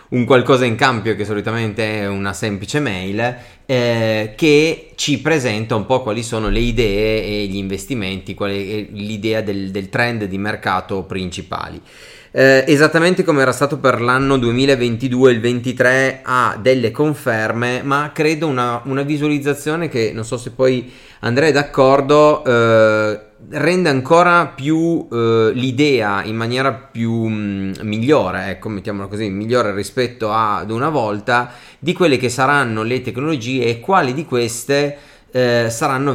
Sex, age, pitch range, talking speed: male, 30-49, 105-135 Hz, 145 wpm